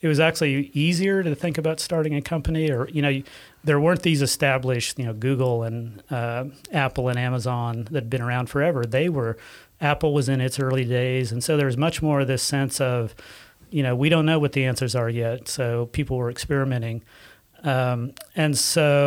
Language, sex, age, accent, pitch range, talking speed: English, male, 40-59, American, 130-150 Hz, 205 wpm